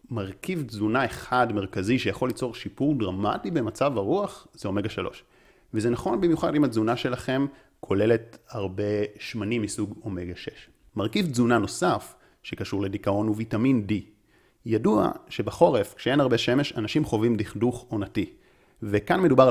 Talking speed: 135 wpm